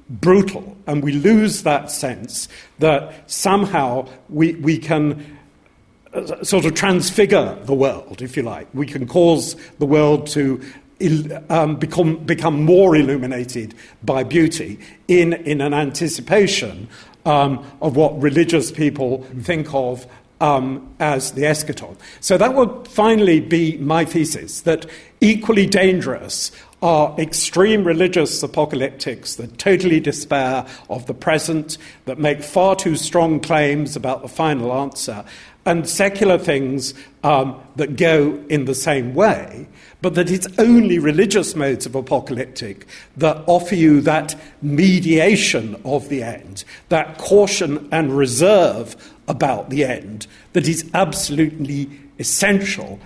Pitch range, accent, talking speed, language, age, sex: 140-170 Hz, British, 130 wpm, English, 50-69, male